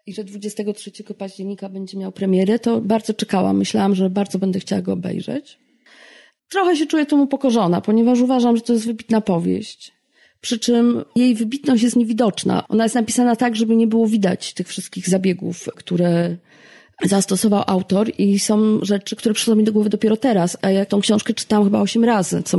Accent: native